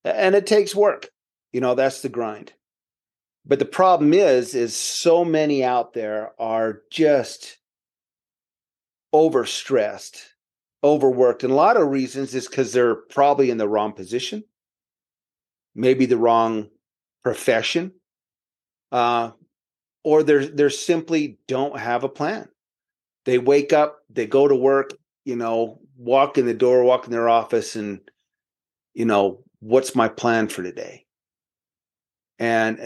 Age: 40-59